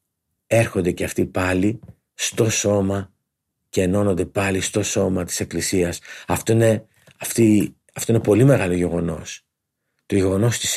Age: 50-69